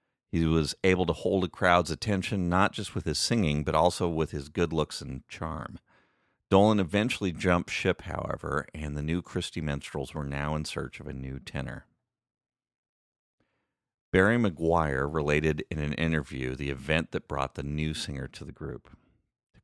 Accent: American